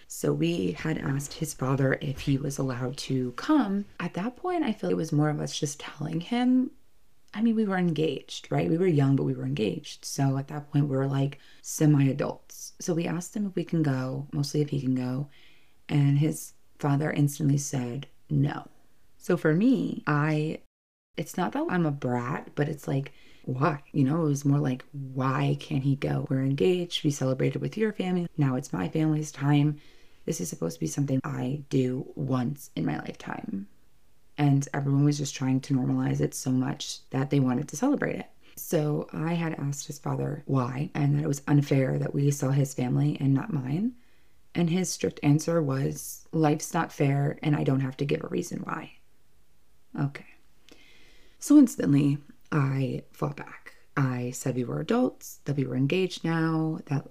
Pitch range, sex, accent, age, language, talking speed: 135-160 Hz, female, American, 20-39, English, 195 wpm